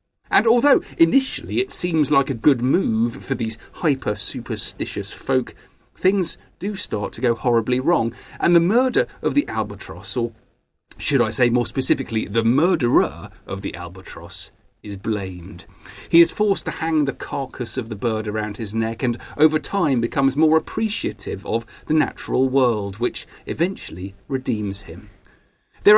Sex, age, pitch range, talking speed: male, 40-59, 115-185 Hz, 155 wpm